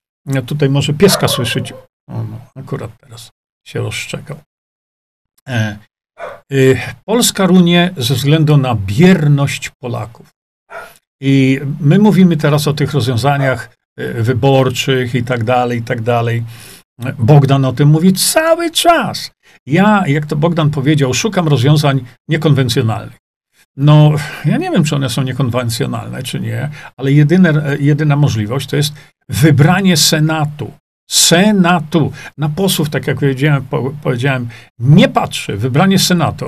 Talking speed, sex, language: 130 wpm, male, Polish